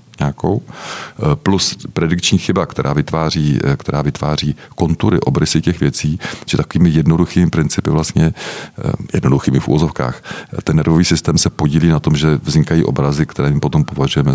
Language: Czech